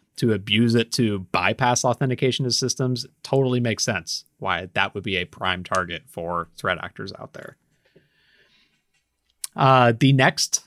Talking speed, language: 145 wpm, English